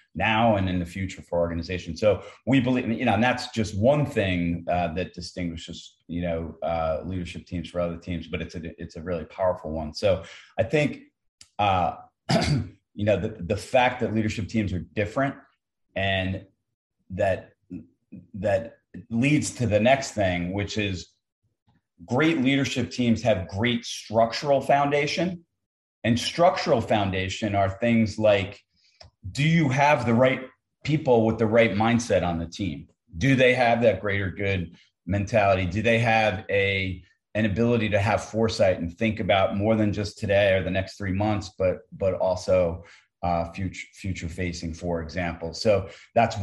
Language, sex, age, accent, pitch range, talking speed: English, male, 30-49, American, 90-115 Hz, 160 wpm